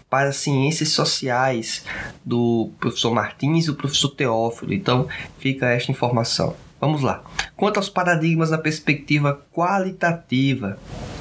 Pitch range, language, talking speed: 140-175 Hz, Portuguese, 125 wpm